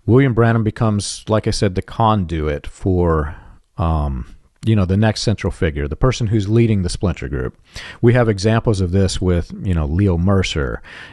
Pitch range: 85-110 Hz